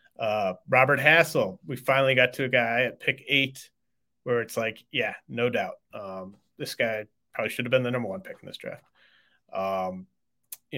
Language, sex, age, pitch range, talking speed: English, male, 30-49, 110-135 Hz, 190 wpm